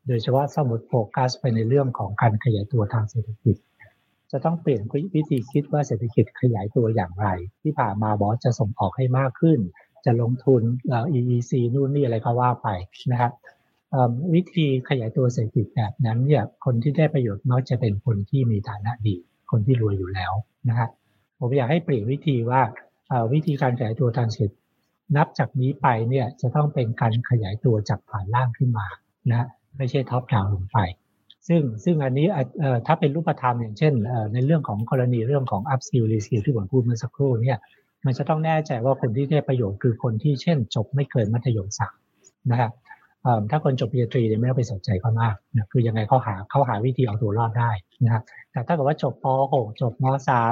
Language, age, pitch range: Thai, 60-79, 115-140 Hz